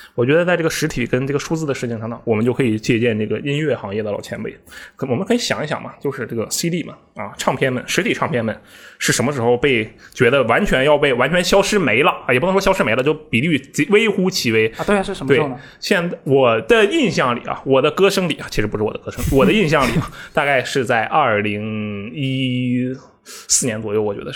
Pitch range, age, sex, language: 120-175 Hz, 20-39, male, Chinese